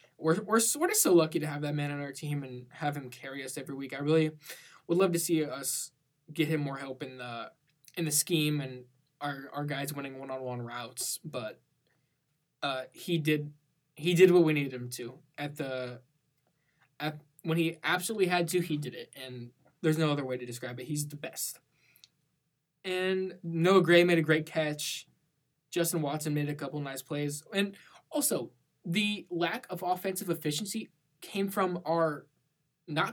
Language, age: English, 20-39